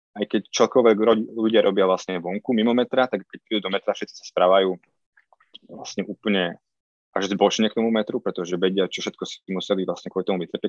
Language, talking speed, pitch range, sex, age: Slovak, 180 wpm, 90-100 Hz, male, 20-39